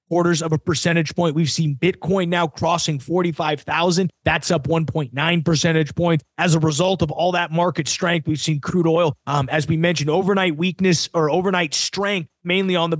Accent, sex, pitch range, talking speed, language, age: American, male, 145-170 Hz, 185 wpm, English, 30-49